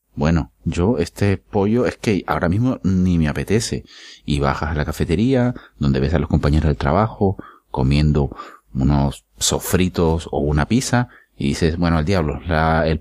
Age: 30-49